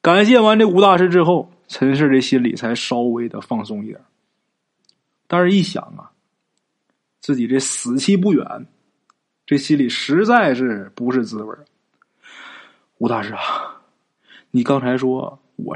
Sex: male